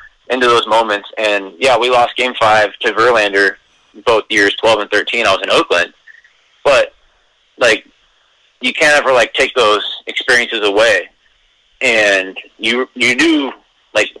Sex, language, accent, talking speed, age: male, English, American, 150 wpm, 20-39